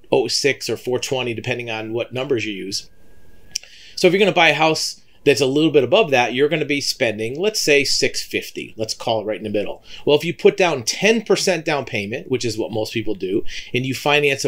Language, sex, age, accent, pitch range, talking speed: English, male, 40-59, American, 120-155 Hz, 230 wpm